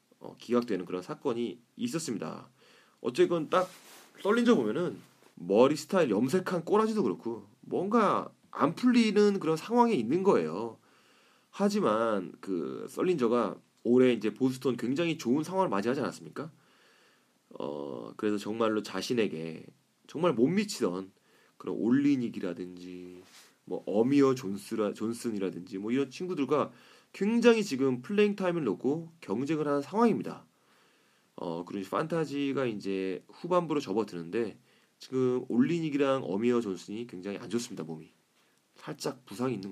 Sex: male